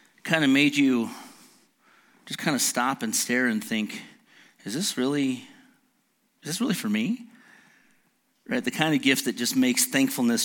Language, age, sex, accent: English, 40-59, male, American